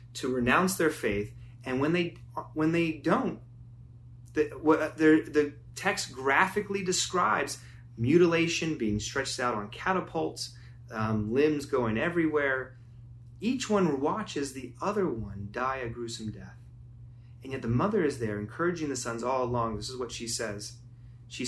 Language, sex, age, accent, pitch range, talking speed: English, male, 30-49, American, 120-145 Hz, 150 wpm